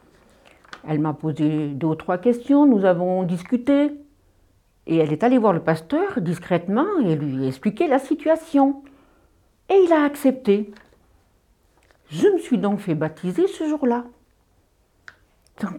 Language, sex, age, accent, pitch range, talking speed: French, female, 60-79, French, 170-245 Hz, 135 wpm